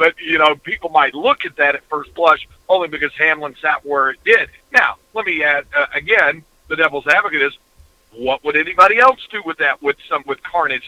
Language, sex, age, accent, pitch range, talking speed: English, male, 50-69, American, 140-200 Hz, 215 wpm